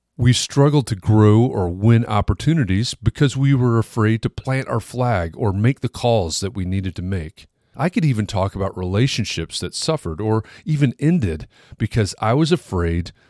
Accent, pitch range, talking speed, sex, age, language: American, 90-125 Hz, 175 wpm, male, 40-59, English